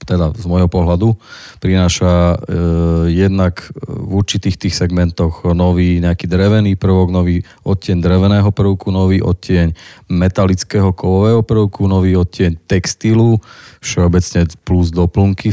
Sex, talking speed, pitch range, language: male, 115 wpm, 85-95 Hz, Slovak